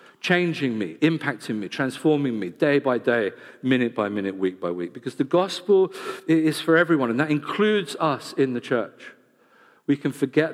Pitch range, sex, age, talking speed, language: 110-145 Hz, male, 50-69, 175 wpm, English